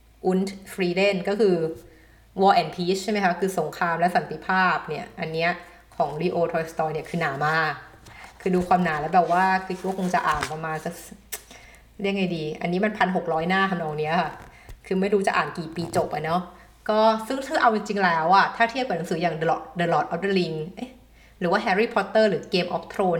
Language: Thai